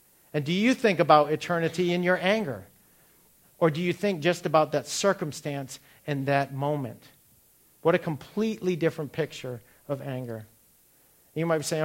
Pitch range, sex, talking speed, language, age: 130-160 Hz, male, 155 wpm, English, 50-69